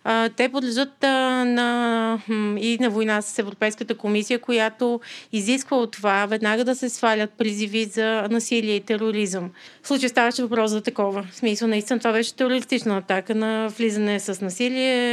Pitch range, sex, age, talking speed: 210-245 Hz, female, 30-49, 160 wpm